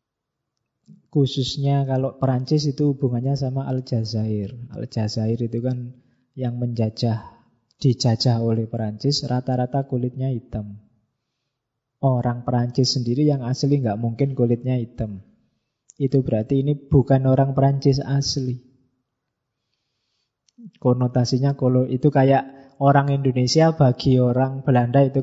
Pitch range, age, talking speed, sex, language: 125-150 Hz, 20-39, 105 wpm, male, Indonesian